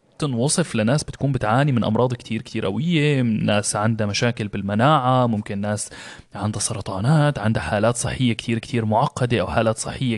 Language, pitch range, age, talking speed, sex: Arabic, 110-135 Hz, 20-39, 155 wpm, male